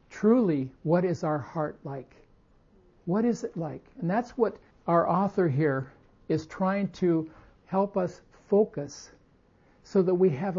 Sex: male